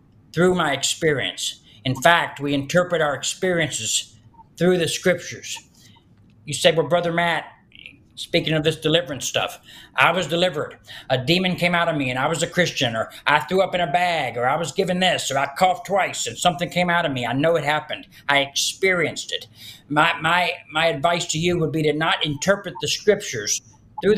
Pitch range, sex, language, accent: 140-180 Hz, male, English, American